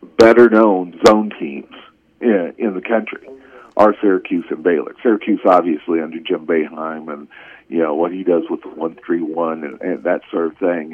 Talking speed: 170 wpm